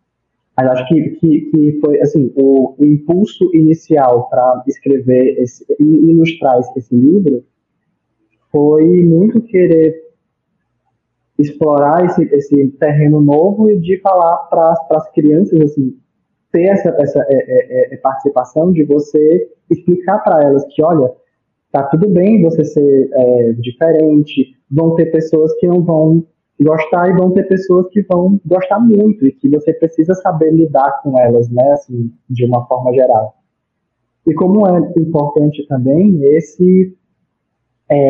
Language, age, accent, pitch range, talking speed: Portuguese, 20-39, Brazilian, 140-175 Hz, 140 wpm